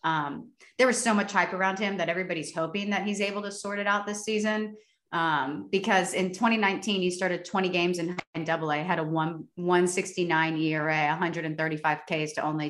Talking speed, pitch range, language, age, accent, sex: 190 wpm, 160-195 Hz, English, 30-49, American, female